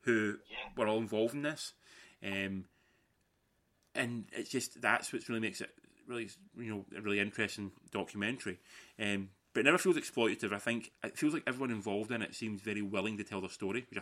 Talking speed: 195 wpm